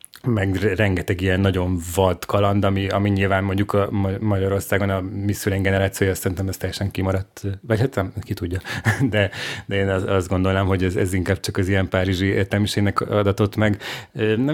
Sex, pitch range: male, 95-110 Hz